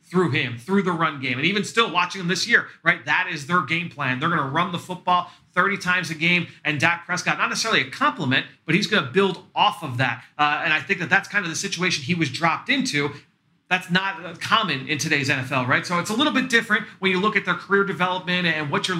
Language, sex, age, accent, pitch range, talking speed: English, male, 30-49, American, 150-180 Hz, 255 wpm